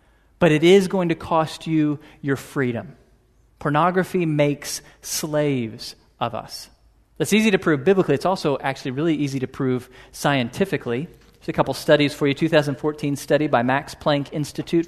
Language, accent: English, American